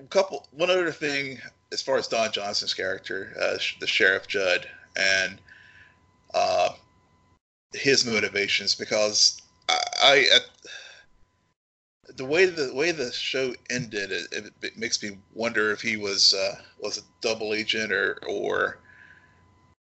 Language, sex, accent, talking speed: English, male, American, 140 wpm